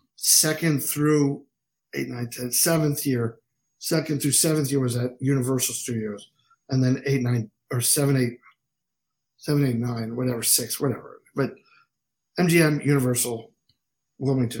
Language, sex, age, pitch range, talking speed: English, male, 50-69, 125-150 Hz, 130 wpm